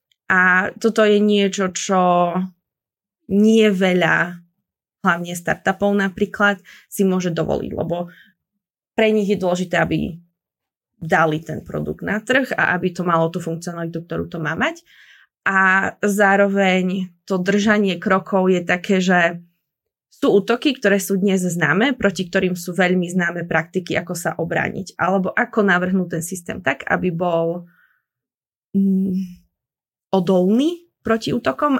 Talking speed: 130 wpm